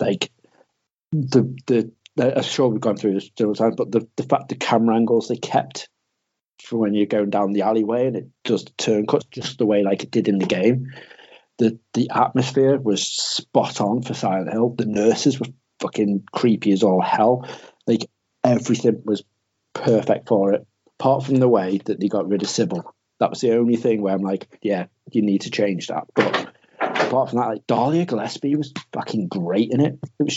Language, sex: English, male